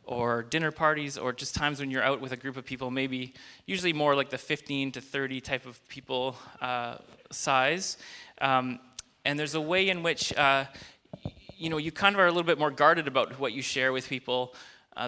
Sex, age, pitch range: male, 20-39, 125-150 Hz